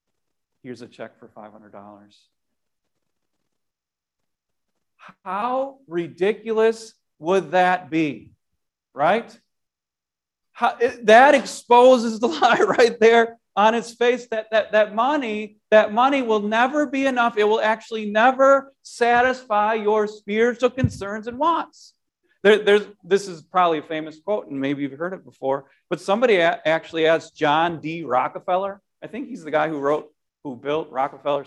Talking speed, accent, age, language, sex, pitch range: 130 wpm, American, 40-59, English, male, 155-225 Hz